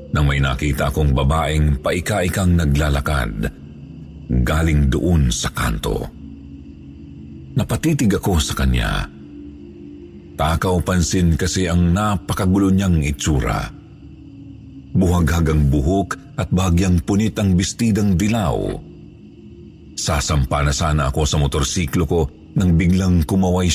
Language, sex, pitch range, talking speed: Filipino, male, 75-95 Hz, 95 wpm